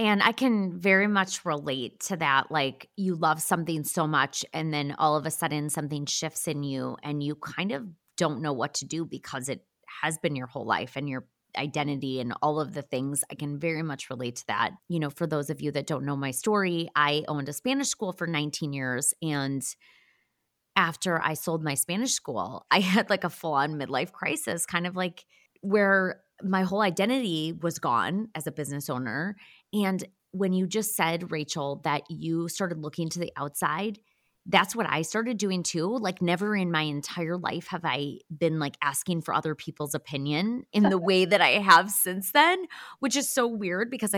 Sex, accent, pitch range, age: female, American, 150-200 Hz, 20-39